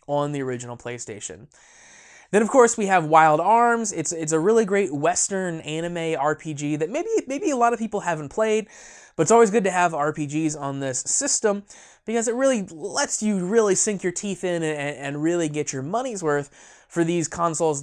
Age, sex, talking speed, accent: 20-39, male, 195 wpm, American